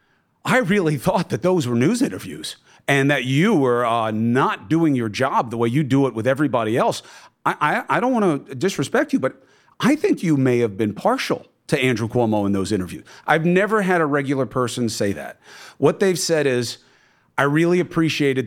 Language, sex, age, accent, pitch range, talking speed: English, male, 40-59, American, 120-155 Hz, 200 wpm